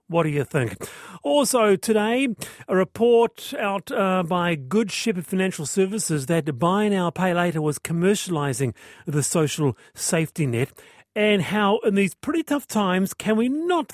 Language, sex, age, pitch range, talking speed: English, male, 40-59, 150-200 Hz, 155 wpm